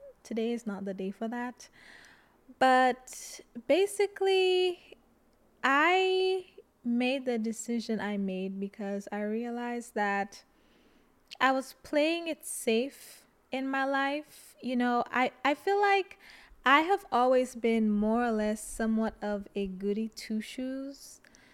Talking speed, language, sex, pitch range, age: 125 wpm, English, female, 205-260 Hz, 20-39